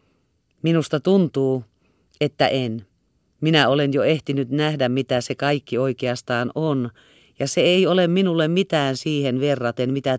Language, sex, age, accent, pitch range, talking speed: Finnish, female, 40-59, native, 115-160 Hz, 135 wpm